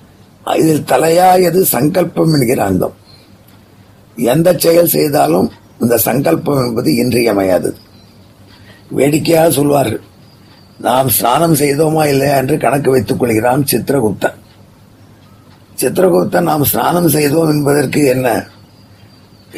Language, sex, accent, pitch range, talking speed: Tamil, male, native, 105-150 Hz, 90 wpm